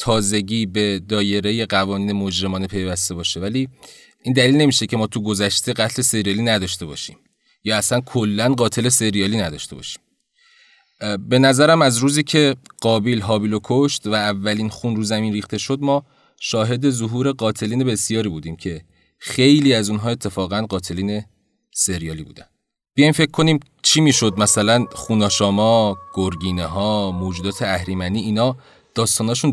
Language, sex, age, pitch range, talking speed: Persian, male, 30-49, 100-135 Hz, 140 wpm